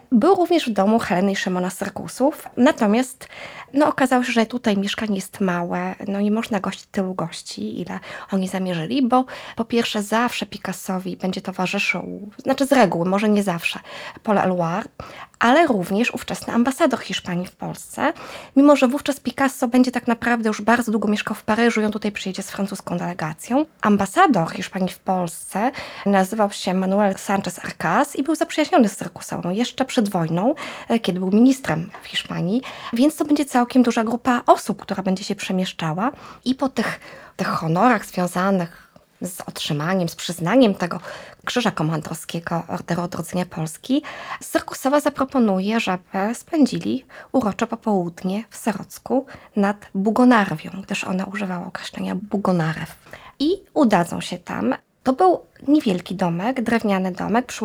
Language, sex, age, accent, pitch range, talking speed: Polish, female, 20-39, native, 185-255 Hz, 145 wpm